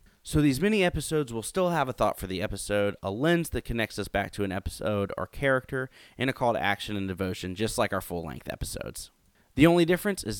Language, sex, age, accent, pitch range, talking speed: English, male, 30-49, American, 100-130 Hz, 220 wpm